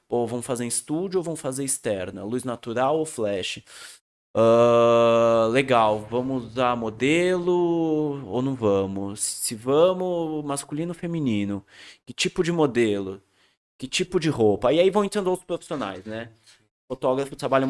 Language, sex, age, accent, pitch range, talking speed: Portuguese, male, 20-39, Brazilian, 110-155 Hz, 145 wpm